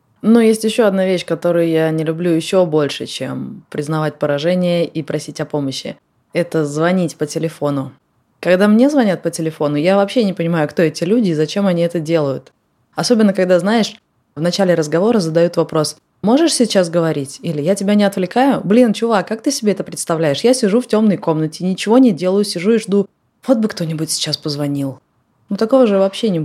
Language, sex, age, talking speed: Russian, female, 20-39, 190 wpm